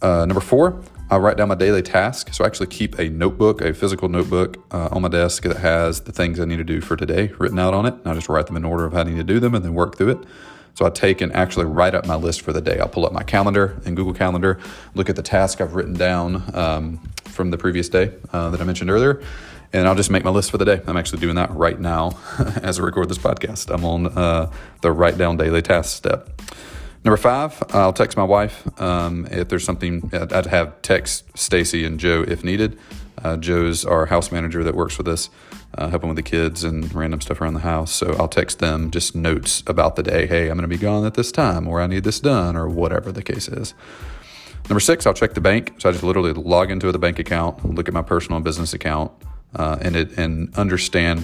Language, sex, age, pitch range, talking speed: English, male, 30-49, 85-95 Hz, 250 wpm